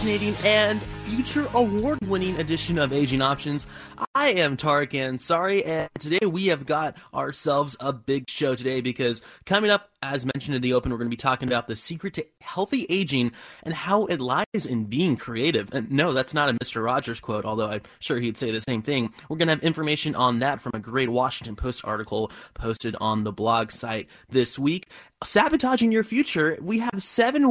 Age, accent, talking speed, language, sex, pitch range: 20-39, American, 195 wpm, English, male, 125-190 Hz